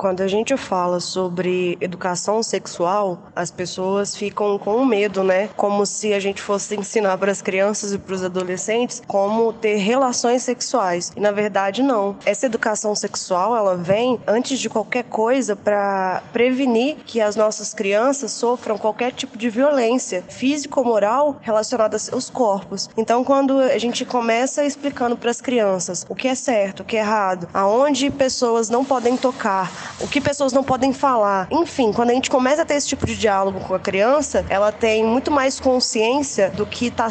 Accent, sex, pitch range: Brazilian, female, 195-245 Hz